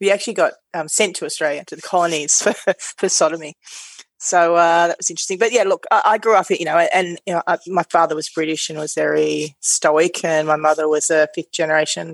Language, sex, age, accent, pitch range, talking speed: English, female, 30-49, Australian, 160-190 Hz, 220 wpm